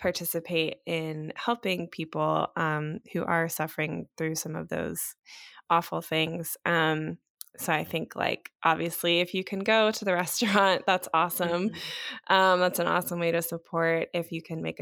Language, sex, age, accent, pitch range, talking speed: English, female, 20-39, American, 160-175 Hz, 160 wpm